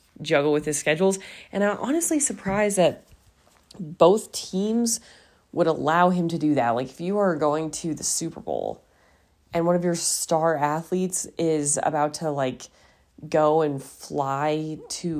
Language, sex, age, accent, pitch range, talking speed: English, female, 30-49, American, 140-175 Hz, 160 wpm